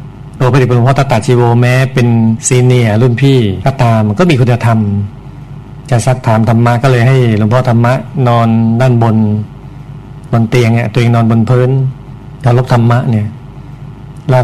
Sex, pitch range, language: male, 120-140 Hz, Thai